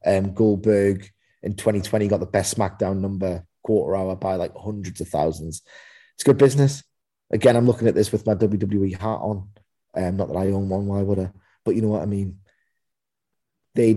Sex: male